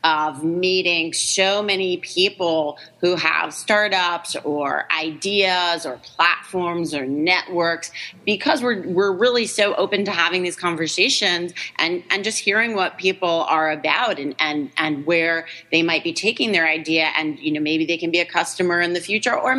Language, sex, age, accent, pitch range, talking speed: English, female, 30-49, American, 165-200 Hz, 170 wpm